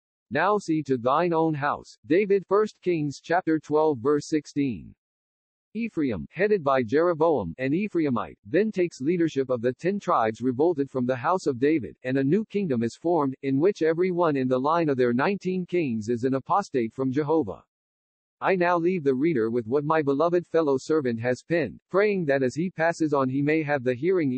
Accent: American